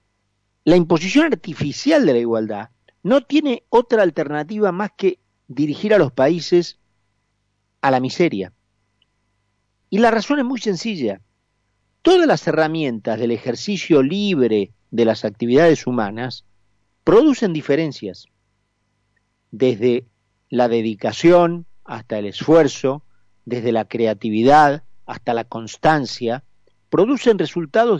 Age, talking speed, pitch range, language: 40-59, 110 wpm, 110-175 Hz, Spanish